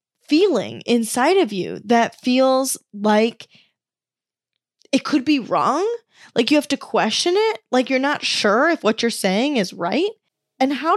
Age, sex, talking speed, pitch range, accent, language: 10-29, female, 160 wpm, 195-240 Hz, American, English